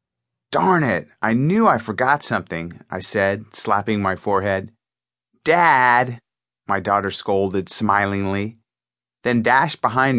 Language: English